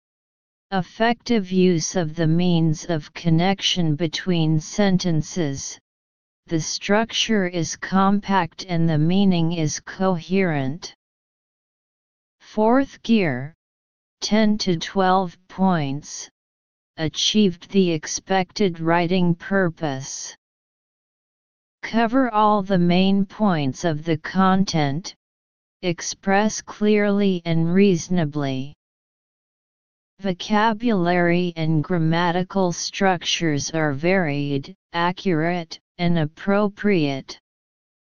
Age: 40-59